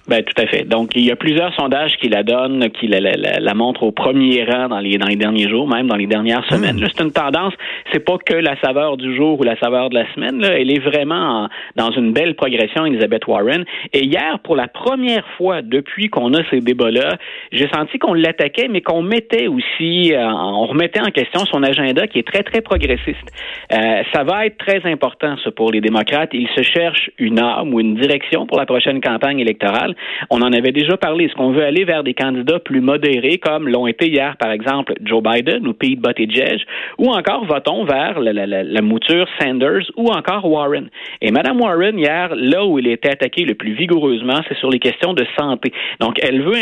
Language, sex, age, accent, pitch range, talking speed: French, male, 30-49, Canadian, 120-170 Hz, 225 wpm